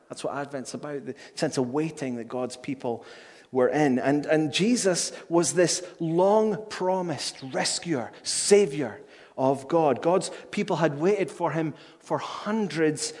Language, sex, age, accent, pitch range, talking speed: English, male, 30-49, British, 125-170 Hz, 140 wpm